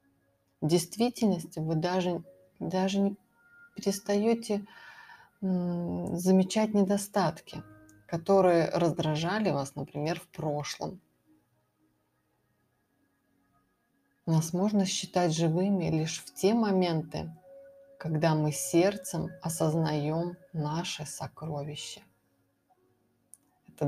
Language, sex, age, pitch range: Russian, female, 30-49, 155-190 Hz